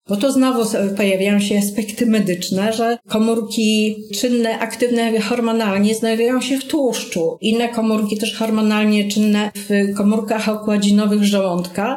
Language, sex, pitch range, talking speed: Polish, female, 195-235 Hz, 125 wpm